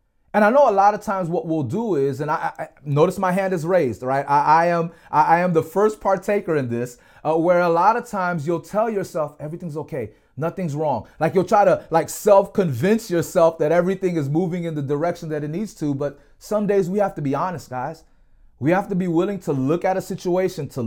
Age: 30-49